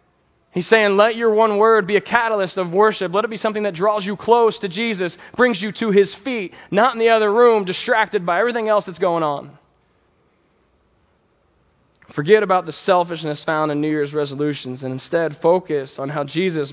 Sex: male